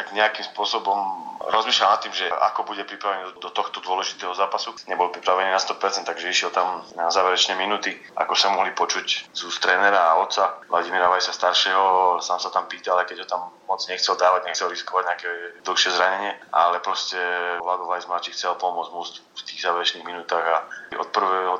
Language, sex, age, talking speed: Slovak, male, 30-49, 175 wpm